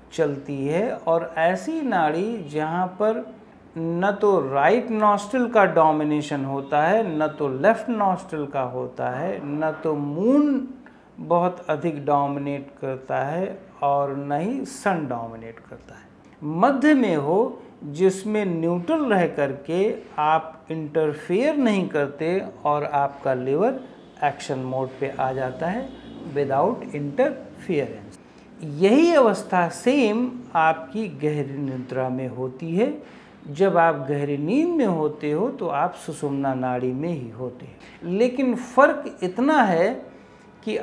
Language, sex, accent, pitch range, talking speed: Hindi, male, native, 145-220 Hz, 130 wpm